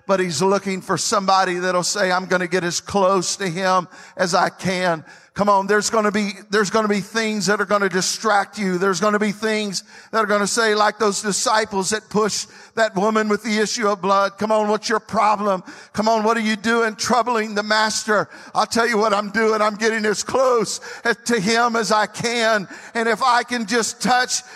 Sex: male